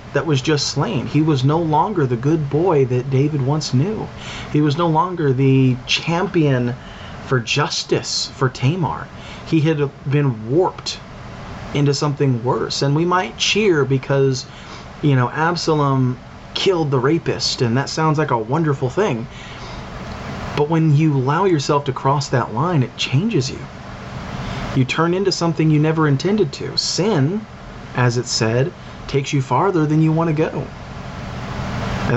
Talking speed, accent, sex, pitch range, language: 155 wpm, American, male, 125-155 Hz, English